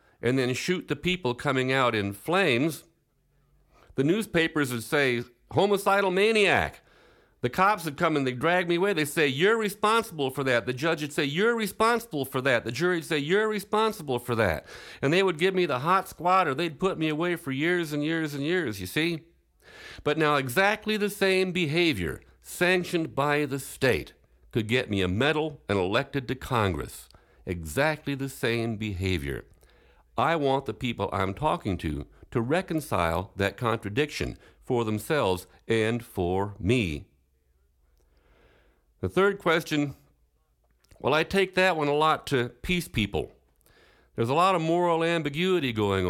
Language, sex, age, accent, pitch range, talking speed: English, male, 50-69, American, 115-170 Hz, 165 wpm